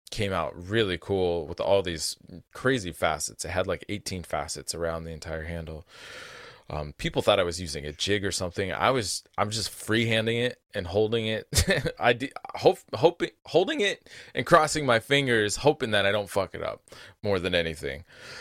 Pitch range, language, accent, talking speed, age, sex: 85-115 Hz, English, American, 190 wpm, 20-39, male